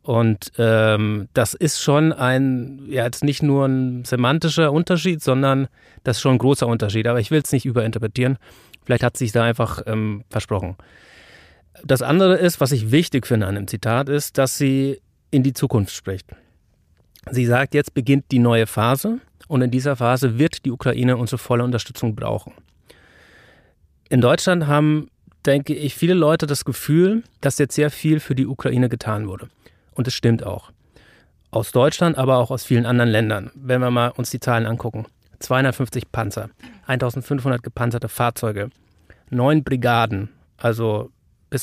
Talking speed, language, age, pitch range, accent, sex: 165 wpm, German, 30-49, 115-135 Hz, German, male